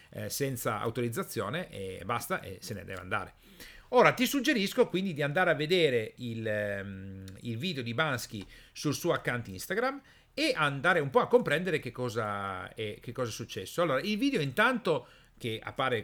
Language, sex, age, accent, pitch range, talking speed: Italian, male, 40-59, native, 115-160 Hz, 185 wpm